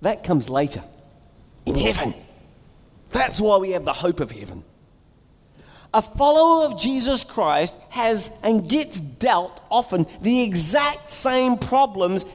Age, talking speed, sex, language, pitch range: 40-59, 130 wpm, male, English, 150-235 Hz